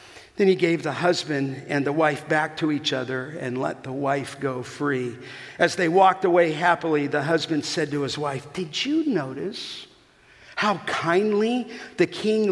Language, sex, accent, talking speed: English, male, American, 175 wpm